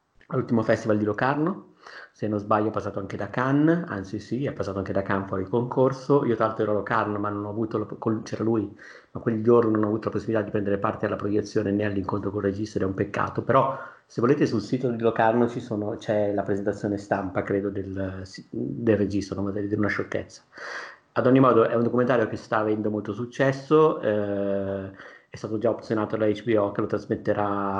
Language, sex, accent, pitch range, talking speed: Italian, male, native, 100-115 Hz, 210 wpm